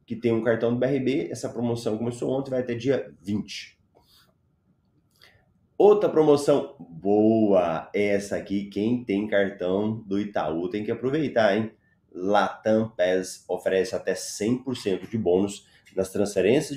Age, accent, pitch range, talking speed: 30-49, Brazilian, 100-135 Hz, 135 wpm